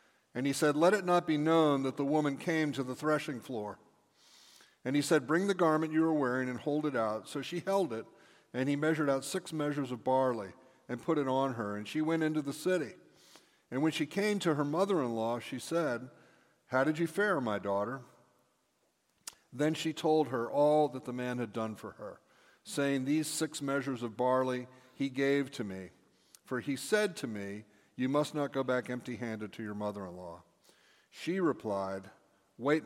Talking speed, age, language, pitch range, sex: 195 wpm, 50-69, English, 120-155 Hz, male